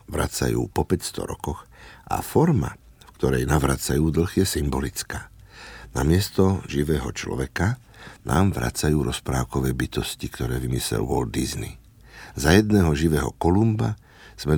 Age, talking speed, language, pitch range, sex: 60-79, 120 wpm, Slovak, 70-95 Hz, male